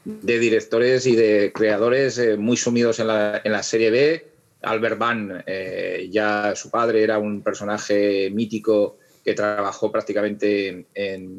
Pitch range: 105-130 Hz